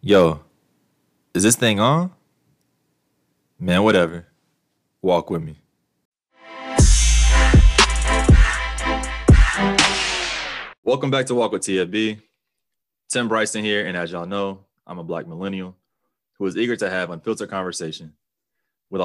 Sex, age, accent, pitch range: male, 20-39, American, 85-105 Hz